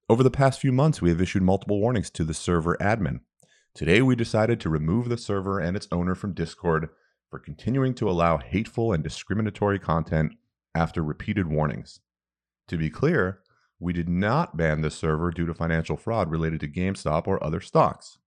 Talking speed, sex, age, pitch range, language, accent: 185 wpm, male, 30-49, 80-105 Hz, English, American